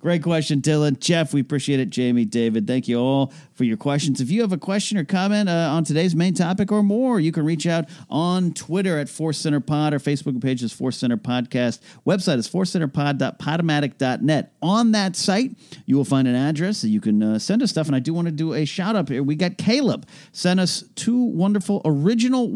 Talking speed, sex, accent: 215 wpm, male, American